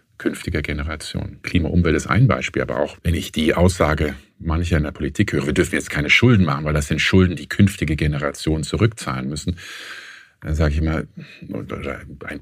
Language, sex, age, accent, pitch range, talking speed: German, male, 50-69, German, 70-90 Hz, 185 wpm